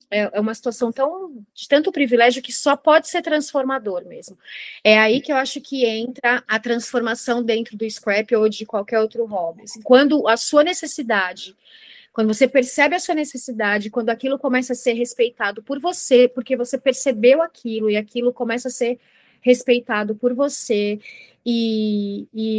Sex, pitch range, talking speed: female, 215-255 Hz, 165 wpm